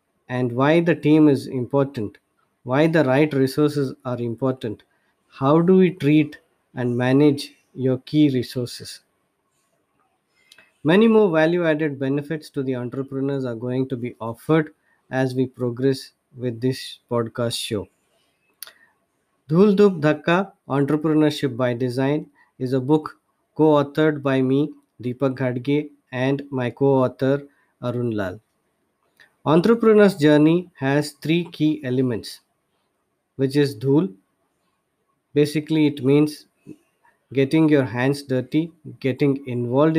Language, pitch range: English, 125-150 Hz